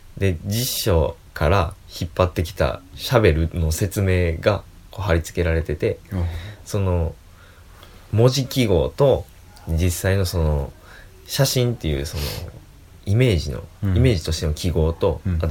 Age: 20-39